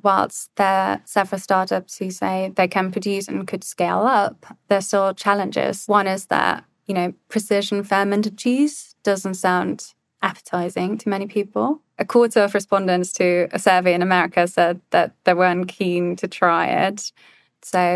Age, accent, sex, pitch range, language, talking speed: 20-39, British, female, 180-200 Hz, English, 165 wpm